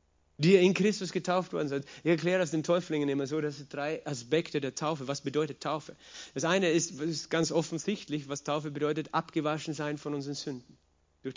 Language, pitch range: German, 140-170 Hz